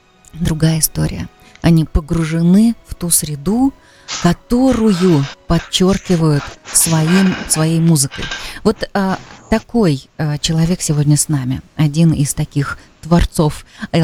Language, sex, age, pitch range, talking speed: Russian, female, 20-39, 145-170 Hz, 105 wpm